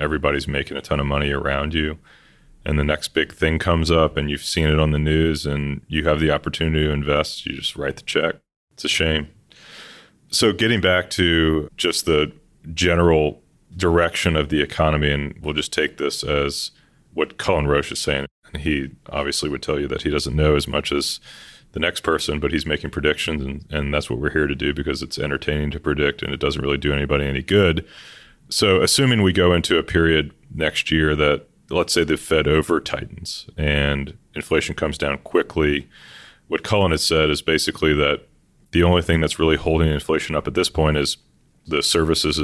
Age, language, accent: 30-49, English, American